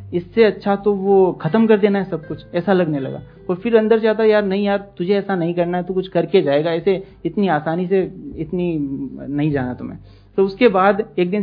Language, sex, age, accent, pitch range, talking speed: Hindi, male, 30-49, native, 145-190 Hz, 225 wpm